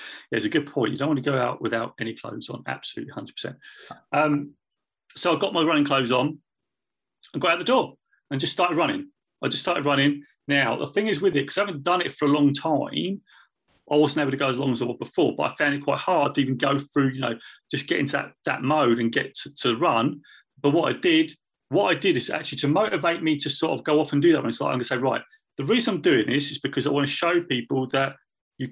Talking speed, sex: 270 wpm, male